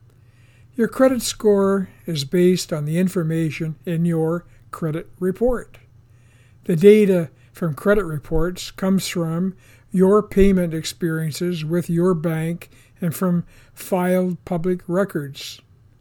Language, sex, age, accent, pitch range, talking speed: English, male, 60-79, American, 135-195 Hz, 110 wpm